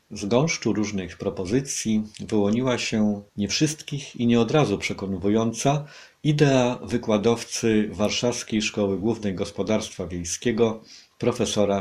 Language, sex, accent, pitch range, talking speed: Polish, male, native, 100-115 Hz, 105 wpm